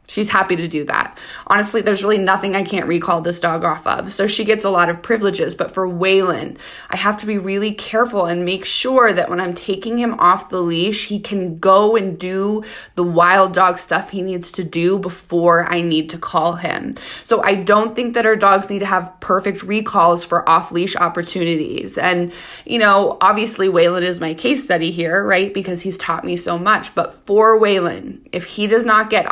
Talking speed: 210 wpm